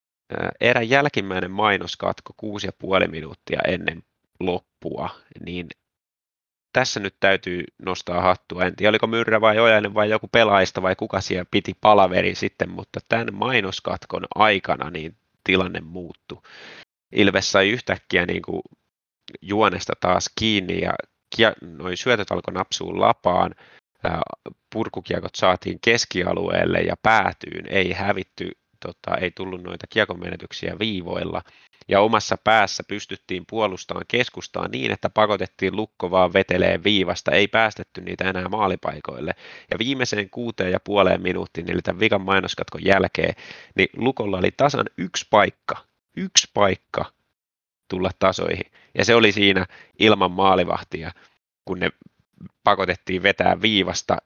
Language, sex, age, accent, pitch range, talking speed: Finnish, male, 30-49, native, 90-105 Hz, 120 wpm